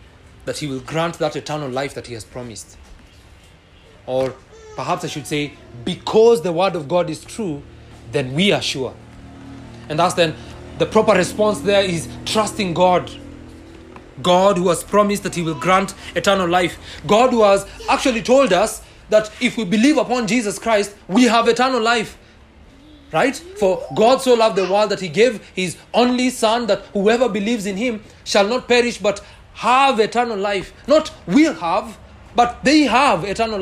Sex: male